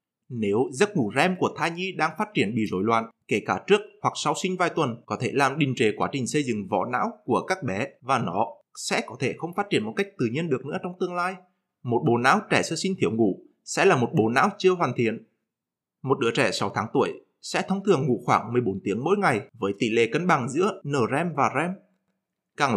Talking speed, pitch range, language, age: 245 wpm, 130-190 Hz, Vietnamese, 20-39